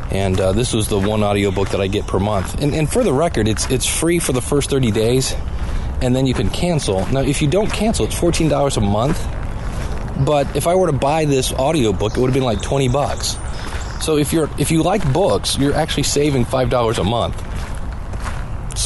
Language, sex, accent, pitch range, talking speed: English, male, American, 100-135 Hz, 215 wpm